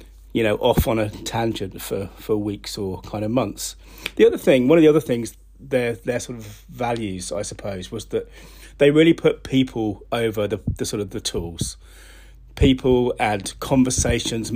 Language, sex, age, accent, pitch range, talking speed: English, male, 30-49, British, 95-120 Hz, 180 wpm